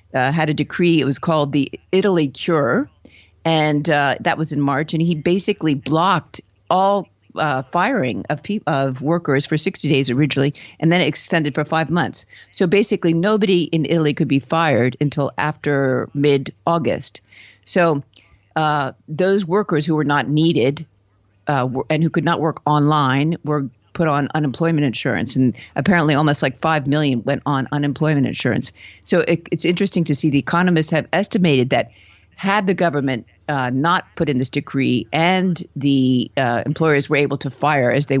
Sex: female